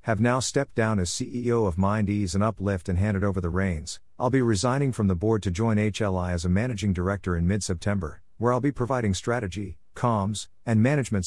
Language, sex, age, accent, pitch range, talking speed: English, male, 50-69, American, 90-115 Hz, 200 wpm